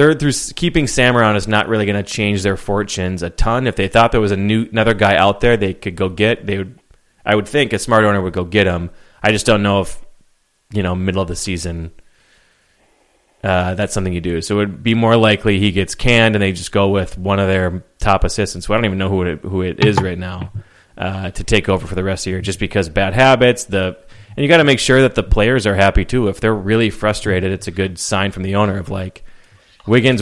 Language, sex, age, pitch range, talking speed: English, male, 30-49, 95-110 Hz, 255 wpm